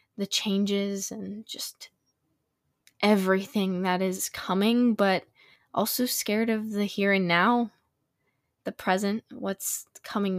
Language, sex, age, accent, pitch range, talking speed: English, female, 10-29, American, 195-255 Hz, 115 wpm